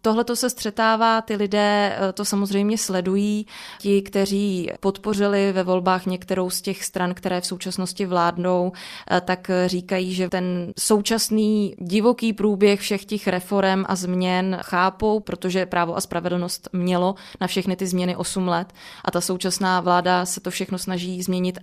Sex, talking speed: female, 150 wpm